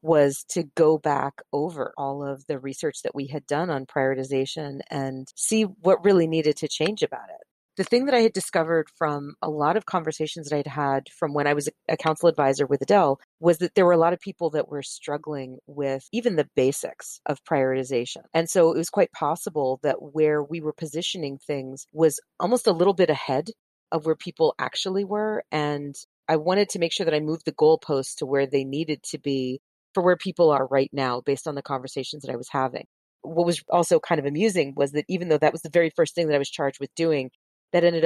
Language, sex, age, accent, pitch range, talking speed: English, female, 40-59, American, 140-170 Hz, 225 wpm